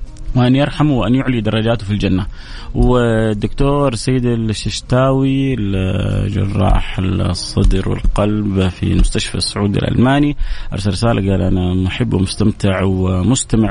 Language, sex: English, male